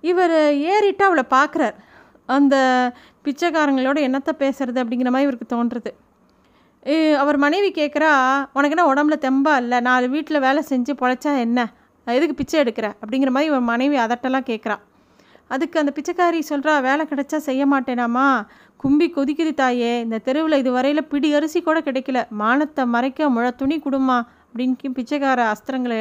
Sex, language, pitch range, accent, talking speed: female, Tamil, 245-295 Hz, native, 140 wpm